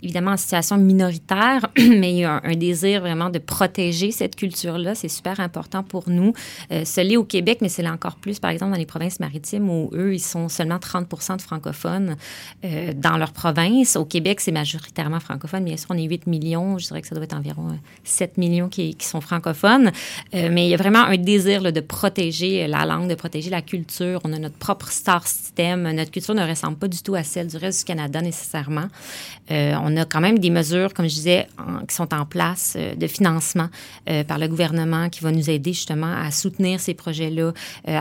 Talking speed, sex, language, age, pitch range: 225 wpm, female, French, 30-49, 160-185 Hz